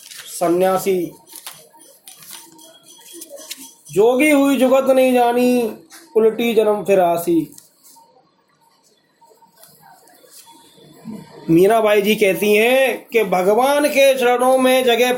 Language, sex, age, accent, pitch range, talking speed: Hindi, male, 30-49, native, 195-265 Hz, 75 wpm